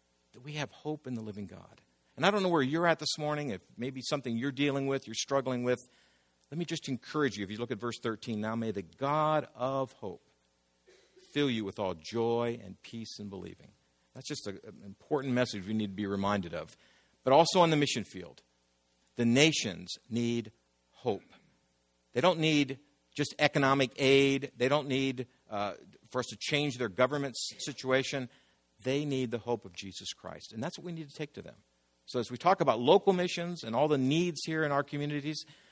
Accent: American